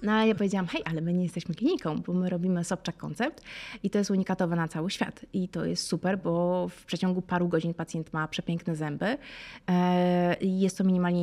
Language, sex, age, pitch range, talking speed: Polish, female, 20-39, 170-205 Hz, 200 wpm